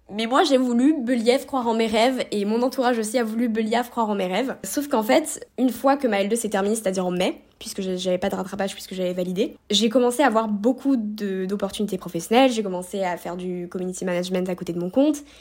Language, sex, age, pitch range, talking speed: French, female, 20-39, 190-240 Hz, 240 wpm